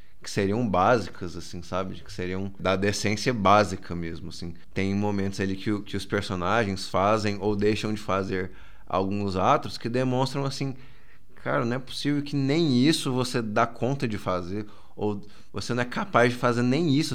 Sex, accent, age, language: male, Brazilian, 20-39, Portuguese